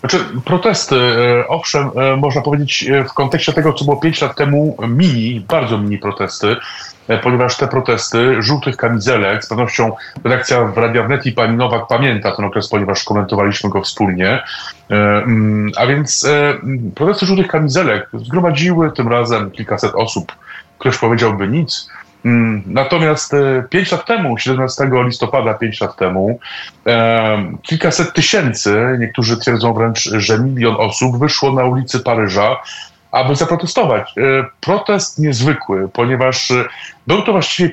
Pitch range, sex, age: 115-160 Hz, male, 30-49